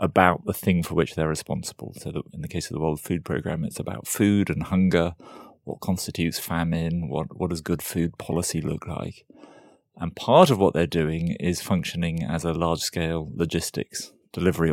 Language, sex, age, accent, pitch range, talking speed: English, male, 30-49, British, 80-95 Hz, 185 wpm